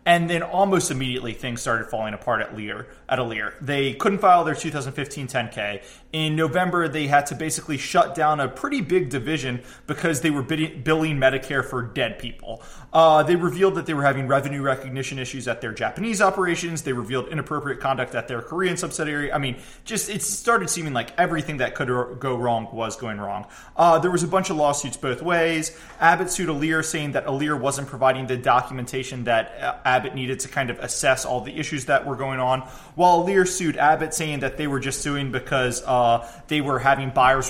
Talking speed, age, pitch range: 200 wpm, 20-39, 130-160 Hz